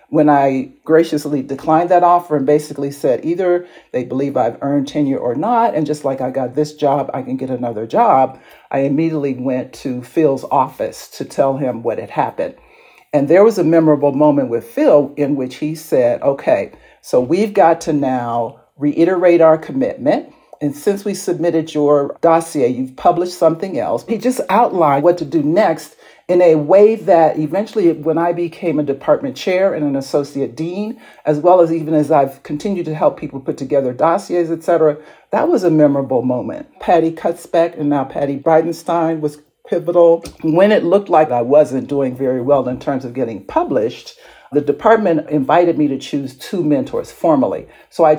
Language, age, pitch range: English, 50-69, 140-175 Hz